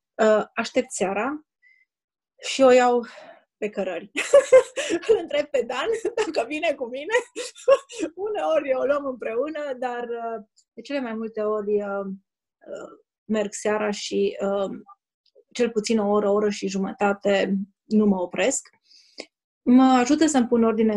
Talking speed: 140 wpm